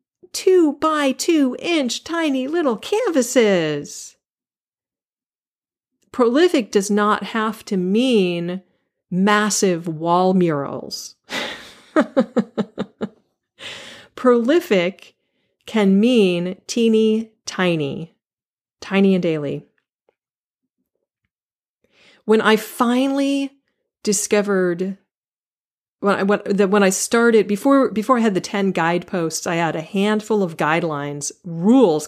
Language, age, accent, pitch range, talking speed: English, 40-59, American, 175-235 Hz, 90 wpm